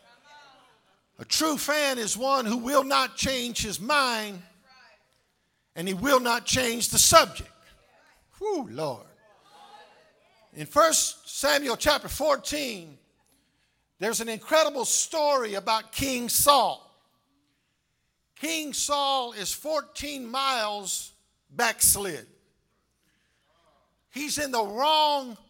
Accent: American